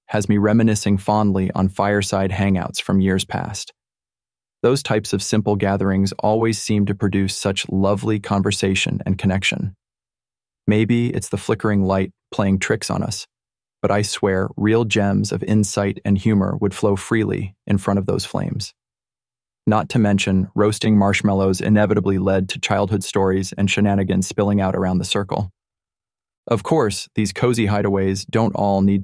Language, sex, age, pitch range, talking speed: English, male, 20-39, 100-110 Hz, 155 wpm